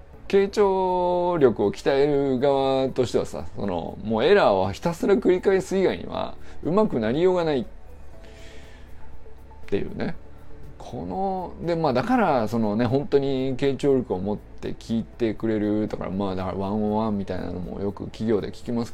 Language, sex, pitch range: Japanese, male, 95-150 Hz